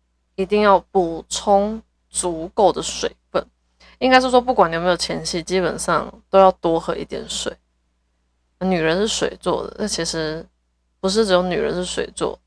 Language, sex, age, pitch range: Chinese, female, 20-39, 160-190 Hz